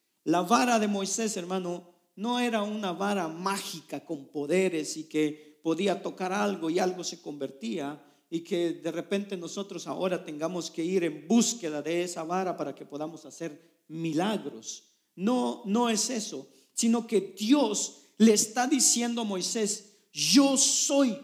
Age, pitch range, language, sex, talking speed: 50-69, 180-250 Hz, Spanish, male, 155 wpm